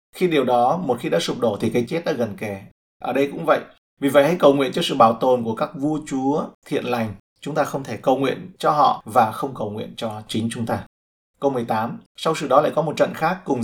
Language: Vietnamese